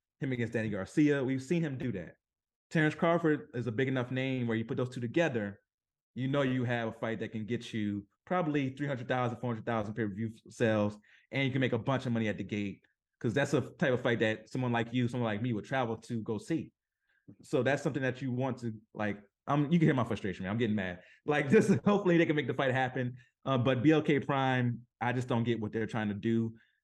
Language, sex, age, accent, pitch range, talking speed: English, male, 20-39, American, 115-145 Hz, 240 wpm